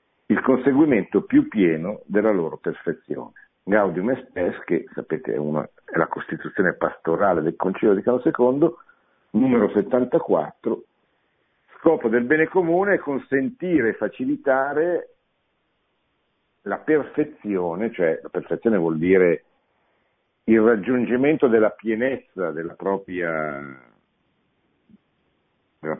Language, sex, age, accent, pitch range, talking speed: Italian, male, 60-79, native, 85-125 Hz, 105 wpm